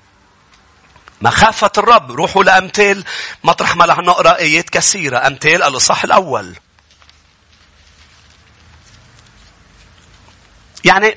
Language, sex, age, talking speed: English, male, 40-59, 75 wpm